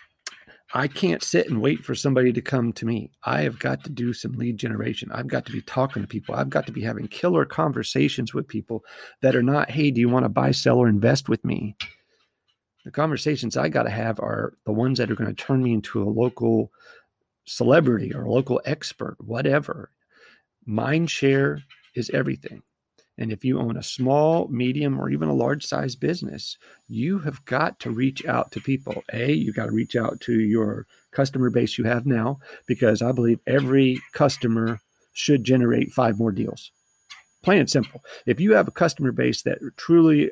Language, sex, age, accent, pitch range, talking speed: English, male, 40-59, American, 110-135 Hz, 195 wpm